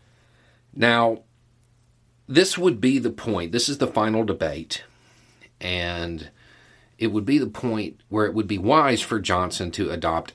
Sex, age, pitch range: male, 40-59, 90-120 Hz